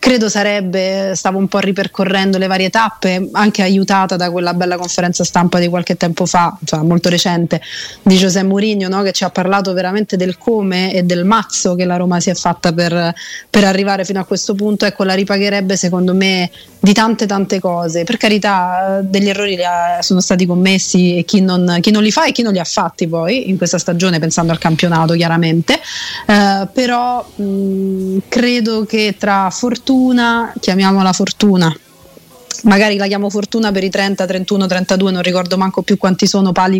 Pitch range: 180-205 Hz